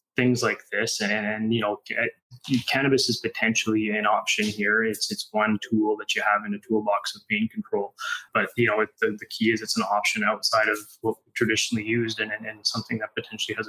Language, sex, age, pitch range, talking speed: English, male, 20-39, 110-120 Hz, 220 wpm